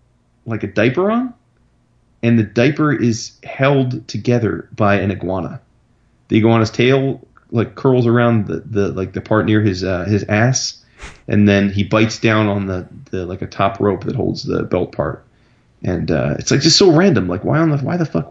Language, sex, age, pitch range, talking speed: English, male, 30-49, 105-135 Hz, 195 wpm